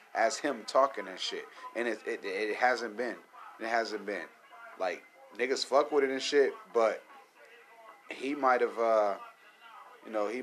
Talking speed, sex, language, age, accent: 165 wpm, male, English, 30-49, American